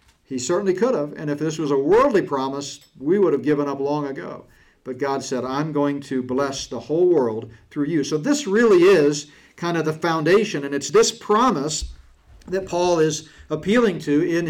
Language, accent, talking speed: English, American, 200 wpm